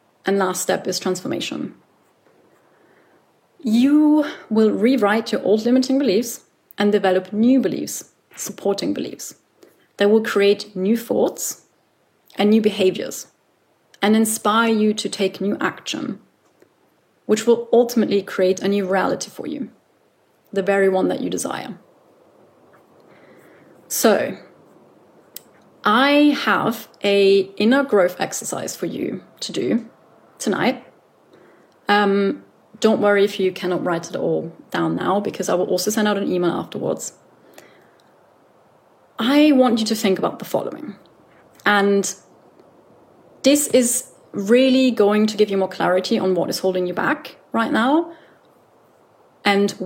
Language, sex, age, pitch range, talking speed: English, female, 30-49, 195-235 Hz, 130 wpm